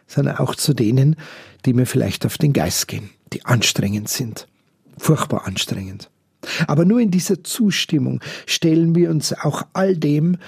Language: German